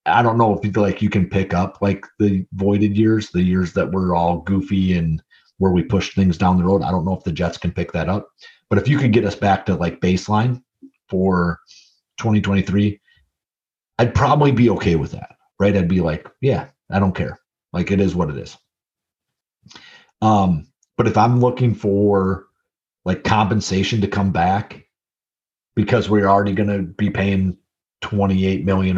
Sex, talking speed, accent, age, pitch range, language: male, 190 wpm, American, 30-49, 90-105 Hz, English